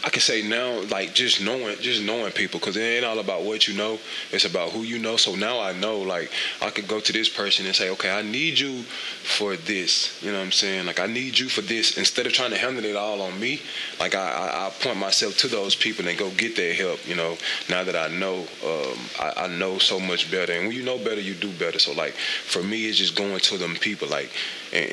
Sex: male